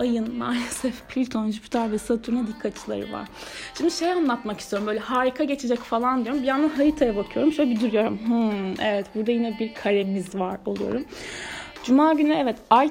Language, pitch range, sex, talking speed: Turkish, 215-255 Hz, female, 165 wpm